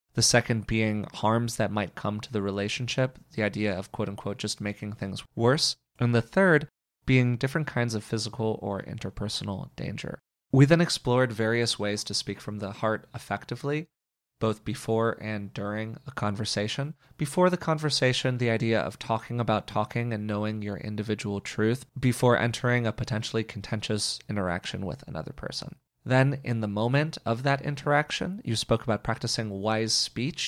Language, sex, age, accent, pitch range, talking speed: English, male, 20-39, American, 105-130 Hz, 160 wpm